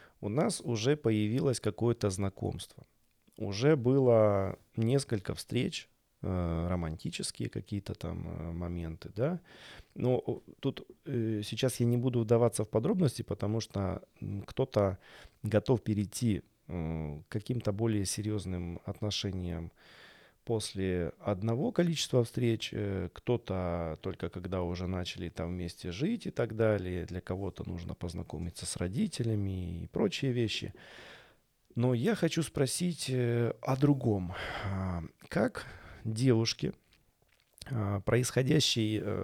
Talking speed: 100 wpm